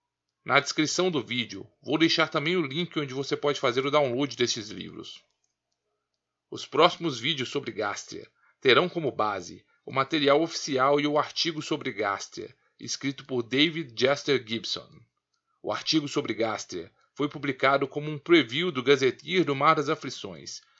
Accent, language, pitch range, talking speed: Brazilian, Portuguese, 120-155 Hz, 155 wpm